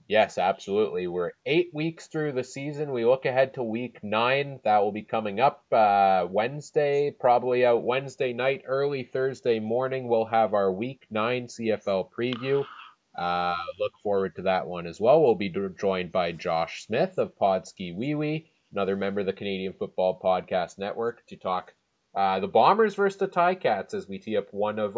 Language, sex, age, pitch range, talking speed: English, male, 20-39, 95-125 Hz, 180 wpm